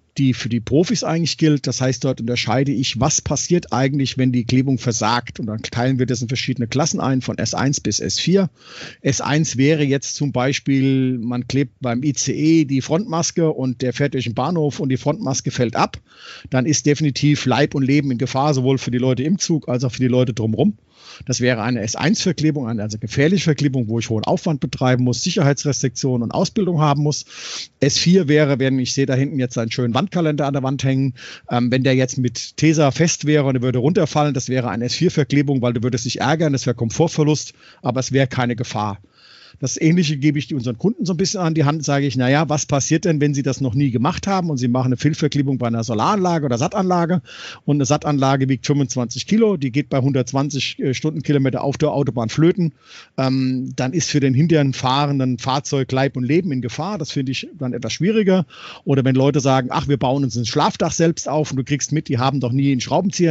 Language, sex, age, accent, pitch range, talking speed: German, male, 50-69, German, 125-155 Hz, 215 wpm